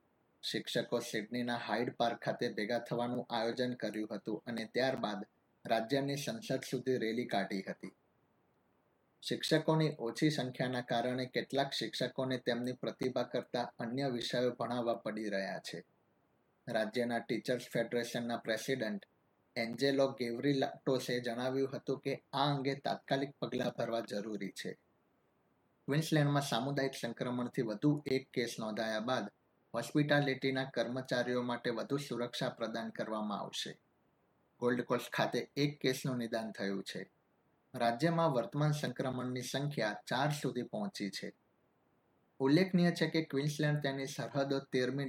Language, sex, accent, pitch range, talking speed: Gujarati, male, native, 115-140 Hz, 60 wpm